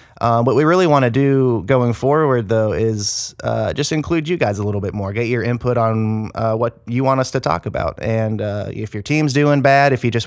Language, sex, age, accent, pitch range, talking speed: English, male, 30-49, American, 105-125 Hz, 245 wpm